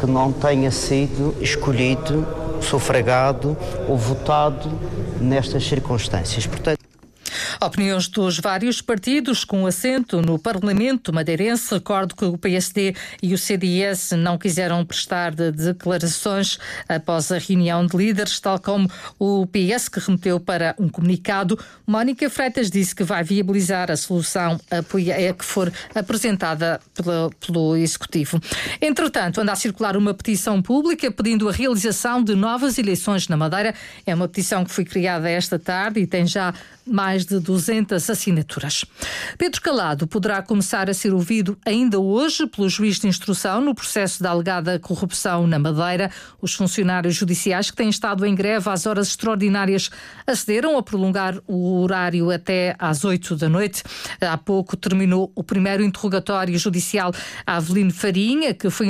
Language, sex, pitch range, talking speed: Portuguese, female, 170-205 Hz, 145 wpm